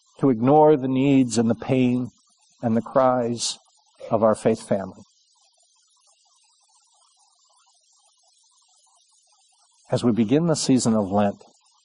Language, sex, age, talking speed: English, male, 60-79, 105 wpm